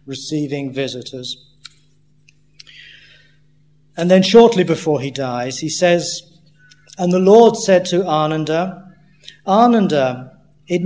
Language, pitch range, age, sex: English, 150-180 Hz, 50-69, male